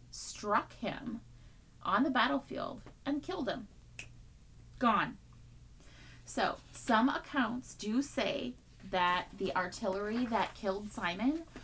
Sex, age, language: female, 30-49, English